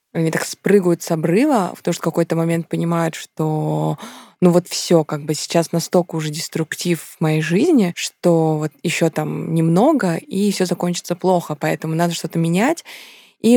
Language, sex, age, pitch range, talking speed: Russian, female, 20-39, 165-190 Hz, 175 wpm